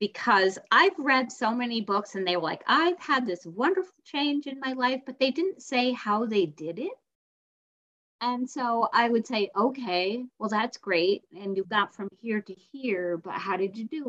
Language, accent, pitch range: English, American, 165-220 Hz